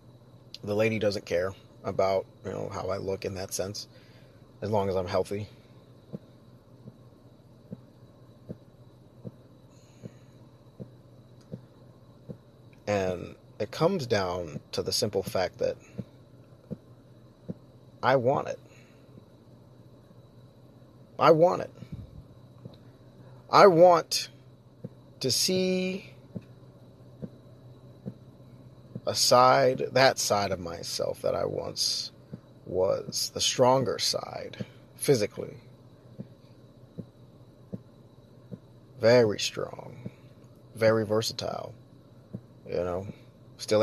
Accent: American